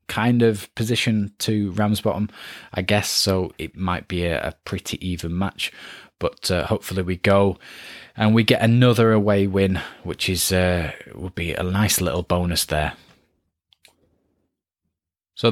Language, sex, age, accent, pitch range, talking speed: English, male, 20-39, British, 90-115 Hz, 145 wpm